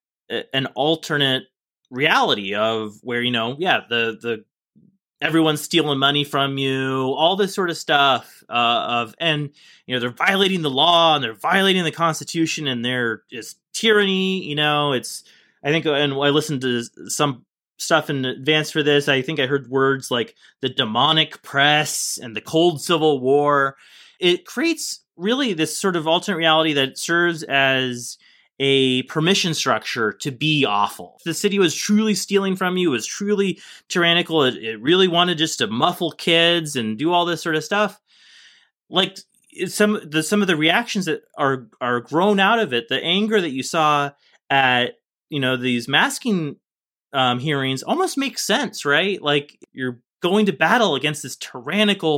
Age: 30-49